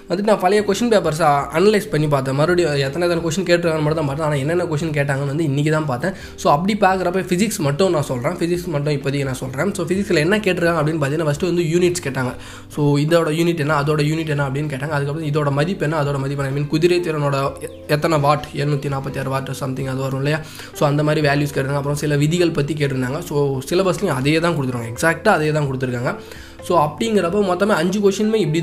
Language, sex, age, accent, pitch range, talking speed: Tamil, male, 20-39, native, 145-175 Hz, 205 wpm